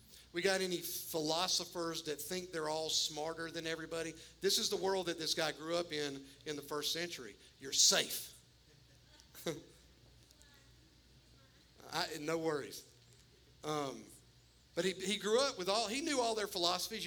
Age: 50-69